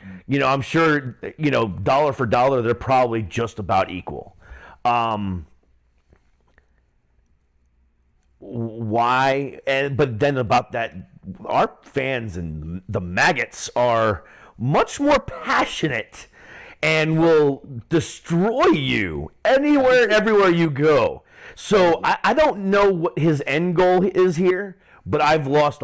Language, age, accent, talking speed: English, 40-59, American, 120 wpm